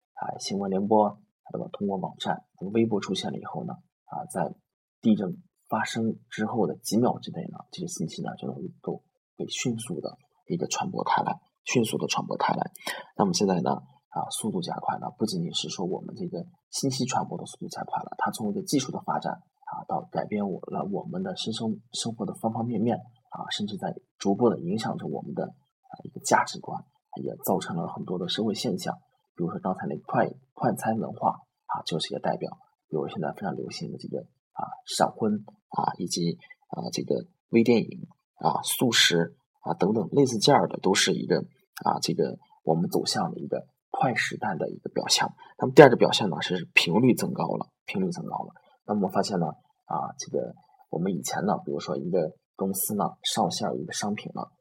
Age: 20-39